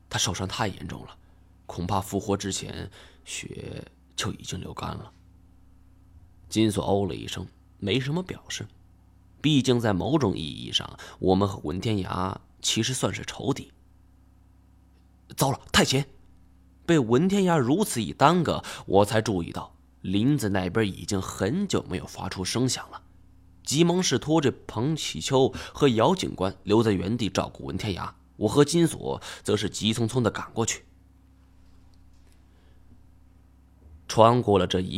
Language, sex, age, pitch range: Chinese, male, 20-39, 90-120 Hz